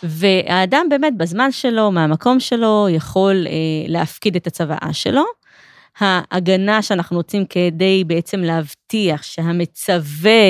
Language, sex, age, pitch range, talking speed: Hebrew, female, 20-39, 165-210 Hz, 110 wpm